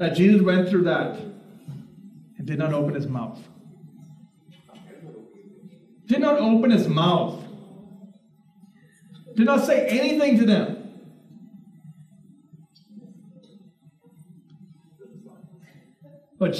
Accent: American